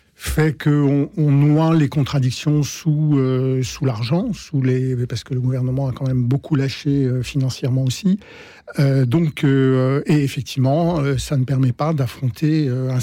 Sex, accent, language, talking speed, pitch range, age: male, French, French, 170 wpm, 130-150 Hz, 50-69